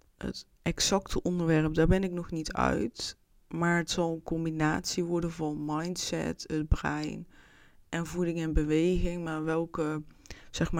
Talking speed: 140 wpm